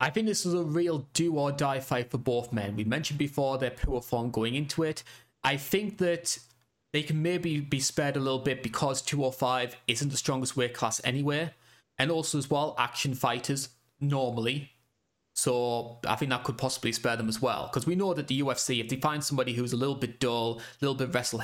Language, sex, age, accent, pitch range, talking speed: English, male, 20-39, British, 120-145 Hz, 215 wpm